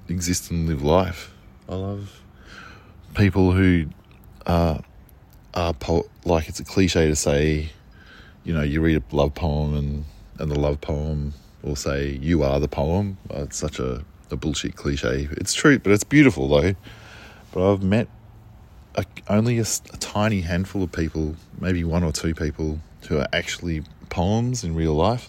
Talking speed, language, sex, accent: 165 wpm, English, male, Australian